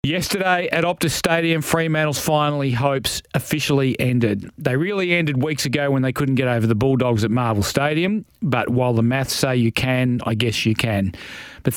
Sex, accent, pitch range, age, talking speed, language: male, Australian, 120-145 Hz, 40-59, 185 wpm, English